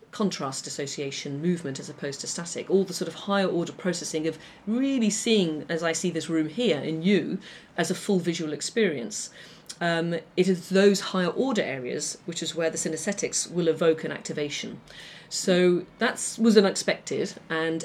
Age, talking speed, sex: 40-59, 170 wpm, female